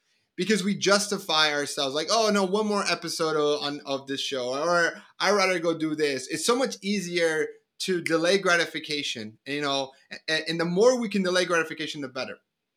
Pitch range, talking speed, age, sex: 140-185 Hz, 190 wpm, 30-49, male